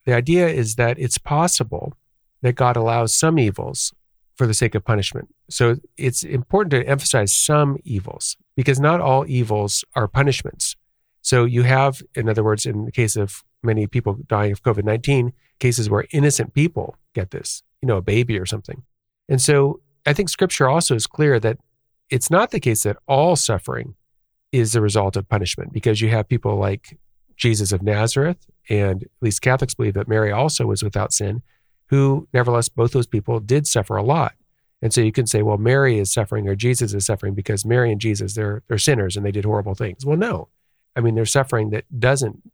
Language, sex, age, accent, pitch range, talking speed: English, male, 40-59, American, 105-135 Hz, 195 wpm